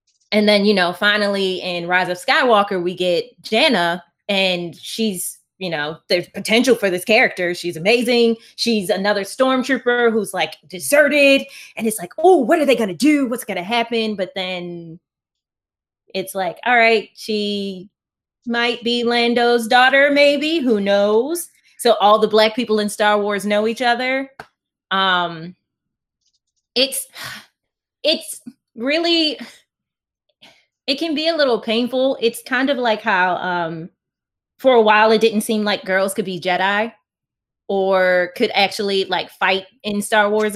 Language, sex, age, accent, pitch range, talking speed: English, female, 20-39, American, 190-240 Hz, 150 wpm